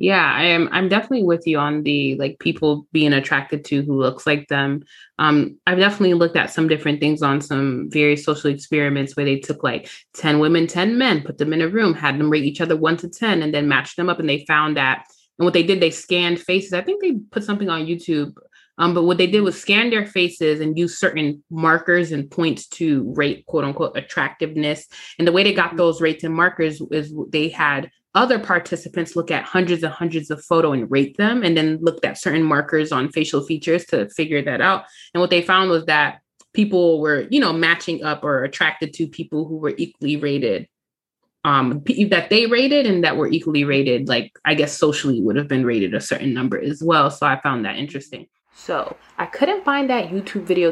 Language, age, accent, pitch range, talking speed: English, 20-39, American, 150-185 Hz, 220 wpm